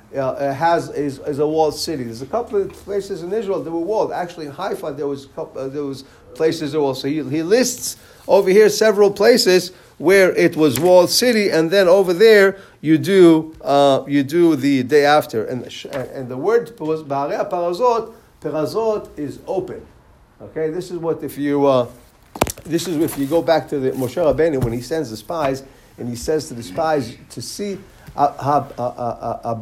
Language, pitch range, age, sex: English, 145-195 Hz, 50-69, male